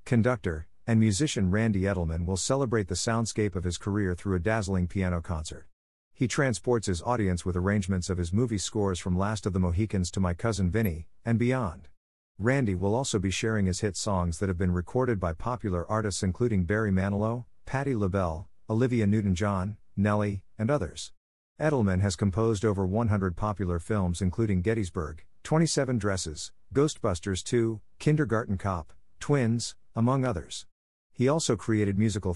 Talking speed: 160 wpm